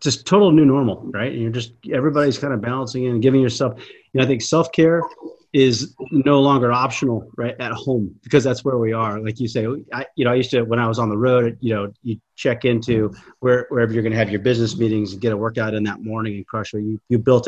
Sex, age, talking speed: male, 30-49, 245 wpm